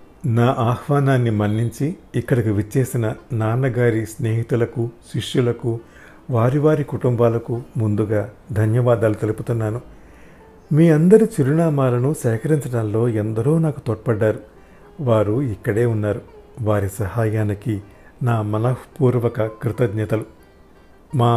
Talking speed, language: 85 wpm, Telugu